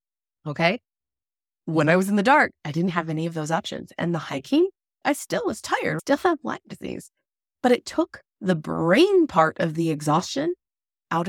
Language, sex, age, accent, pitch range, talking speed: English, female, 30-49, American, 155-210 Hz, 185 wpm